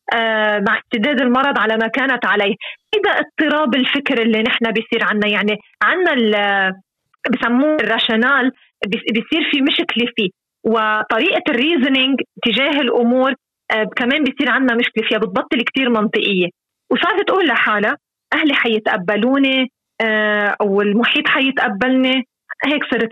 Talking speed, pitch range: 110 wpm, 215-260 Hz